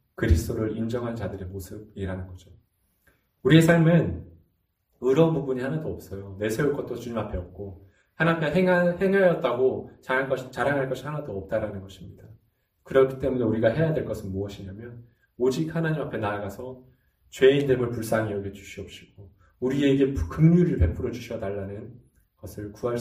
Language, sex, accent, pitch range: Korean, male, native, 95-130 Hz